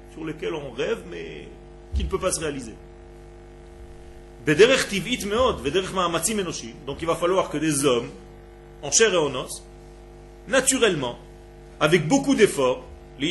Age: 40-59